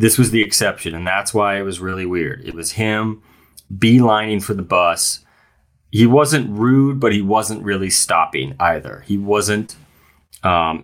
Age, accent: 30-49, American